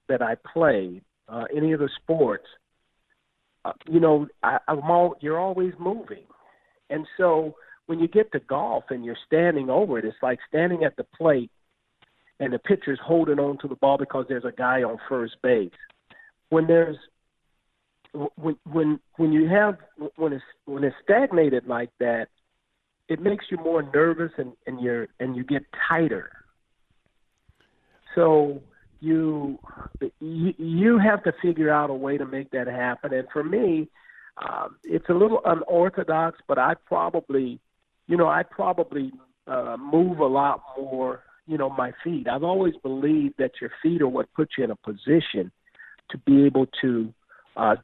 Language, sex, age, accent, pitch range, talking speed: English, male, 50-69, American, 135-165 Hz, 165 wpm